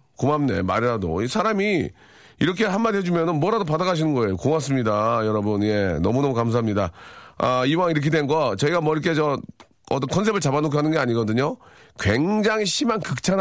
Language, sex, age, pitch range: Korean, male, 40-59, 115-180 Hz